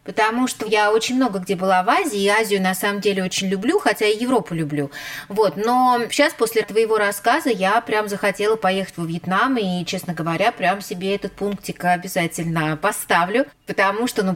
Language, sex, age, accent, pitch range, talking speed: Russian, female, 20-39, native, 160-210 Hz, 185 wpm